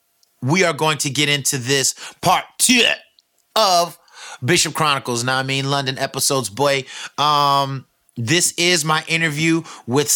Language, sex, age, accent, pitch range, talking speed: English, male, 30-49, American, 120-155 Hz, 140 wpm